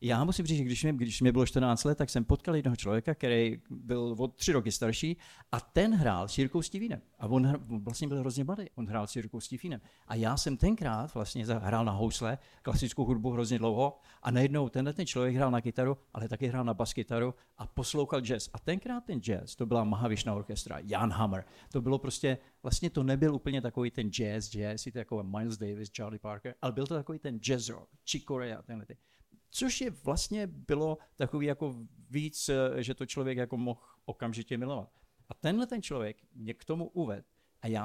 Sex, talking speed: male, 195 wpm